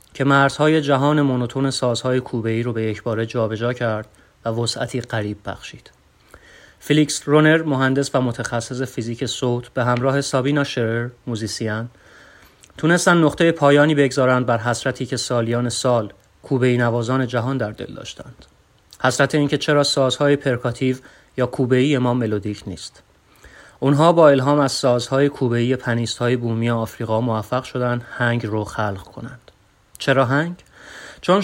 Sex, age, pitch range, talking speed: male, 30-49, 115-140 Hz, 135 wpm